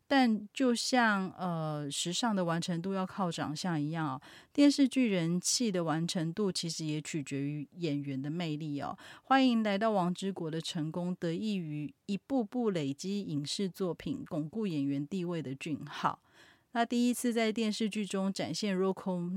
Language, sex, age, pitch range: Chinese, female, 30-49, 160-210 Hz